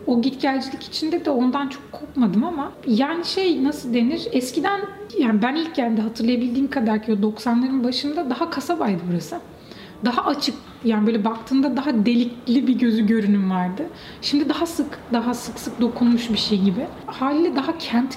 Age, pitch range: 30-49, 215-270 Hz